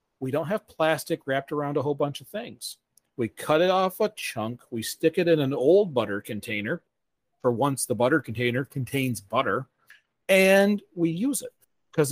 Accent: American